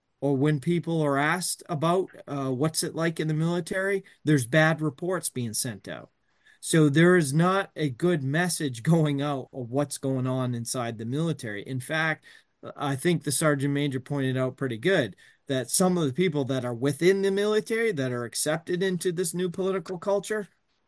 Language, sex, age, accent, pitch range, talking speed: English, male, 30-49, American, 130-165 Hz, 185 wpm